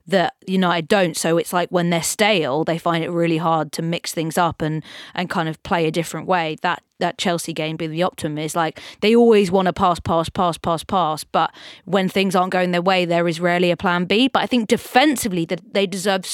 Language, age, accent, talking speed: English, 20-39, British, 240 wpm